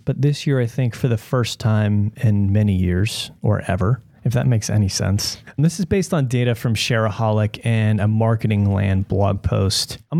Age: 30-49